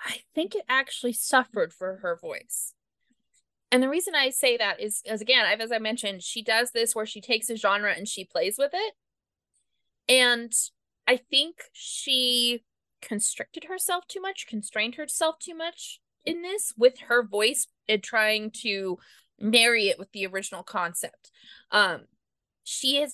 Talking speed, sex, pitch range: 165 wpm, female, 200-270 Hz